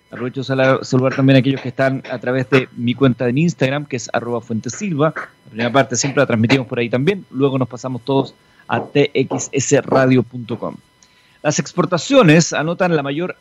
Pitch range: 130-165 Hz